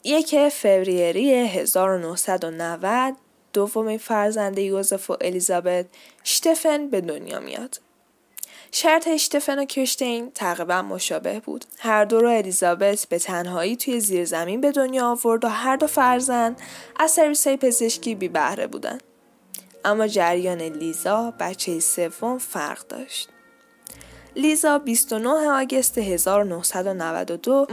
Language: Persian